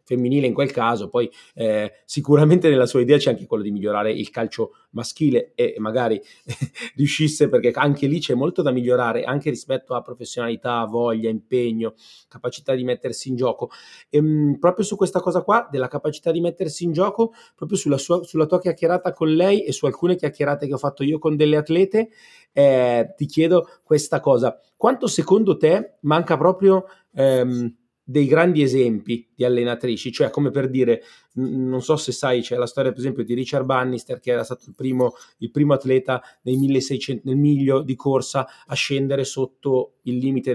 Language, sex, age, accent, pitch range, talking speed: Italian, male, 30-49, native, 125-160 Hz, 180 wpm